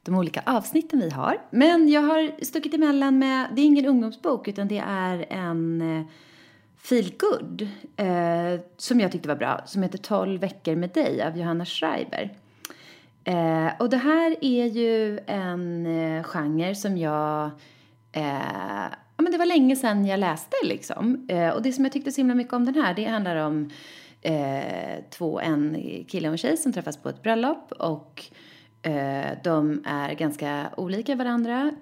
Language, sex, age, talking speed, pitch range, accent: English, female, 30-49, 165 wpm, 155-240 Hz, Swedish